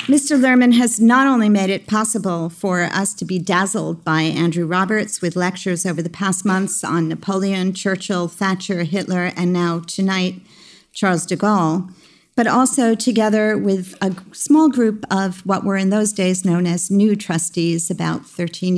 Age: 50-69